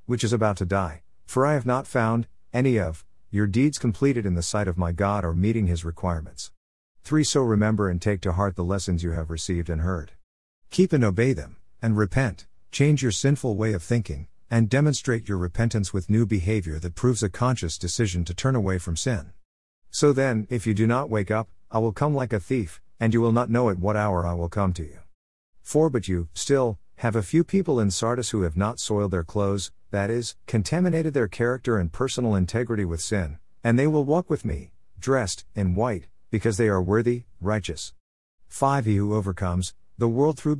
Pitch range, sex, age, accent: 90-120 Hz, male, 50-69, American